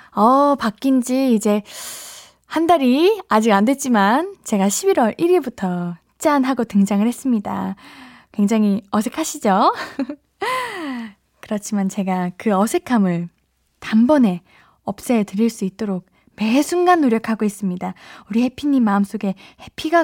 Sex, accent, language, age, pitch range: female, native, Korean, 20-39, 200-275 Hz